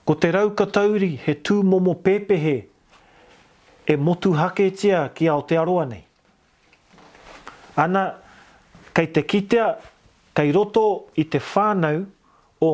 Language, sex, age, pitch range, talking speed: English, male, 40-59, 145-195 Hz, 110 wpm